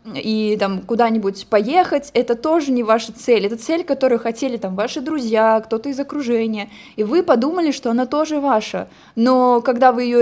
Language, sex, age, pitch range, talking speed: Russian, female, 20-39, 220-275 Hz, 175 wpm